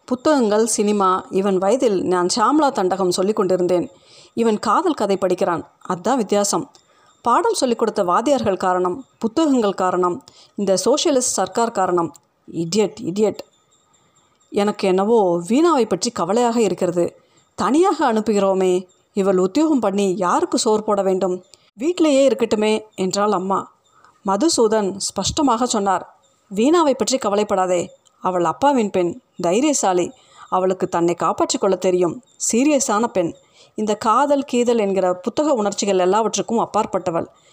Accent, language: native, Tamil